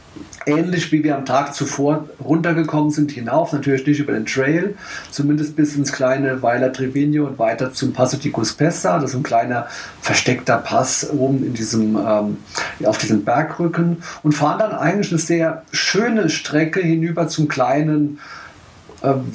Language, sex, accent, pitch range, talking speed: German, male, German, 130-155 Hz, 165 wpm